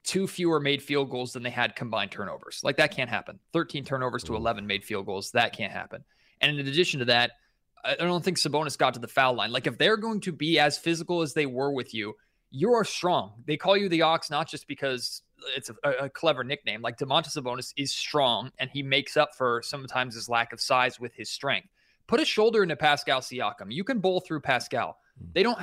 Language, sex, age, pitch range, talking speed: English, male, 20-39, 125-165 Hz, 230 wpm